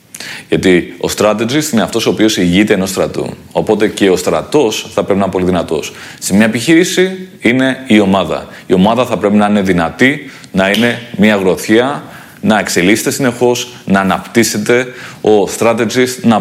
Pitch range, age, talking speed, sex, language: 95-115 Hz, 30-49, 165 wpm, male, Greek